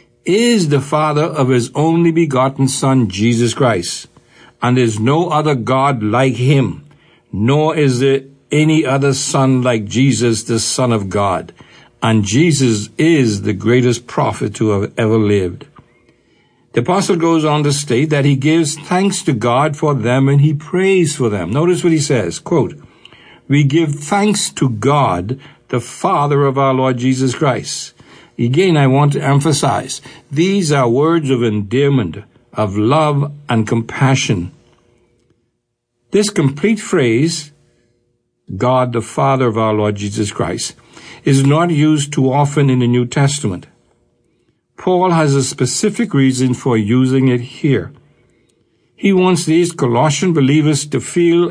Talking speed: 145 wpm